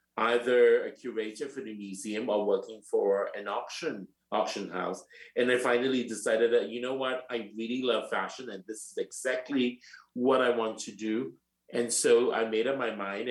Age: 50-69